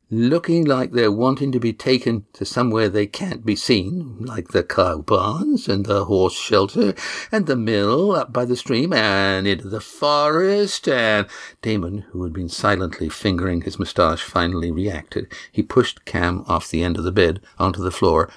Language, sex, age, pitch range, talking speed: English, male, 60-79, 95-140 Hz, 180 wpm